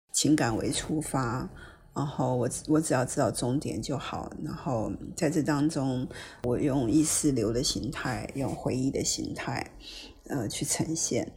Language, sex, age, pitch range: Chinese, female, 50-69, 140-170 Hz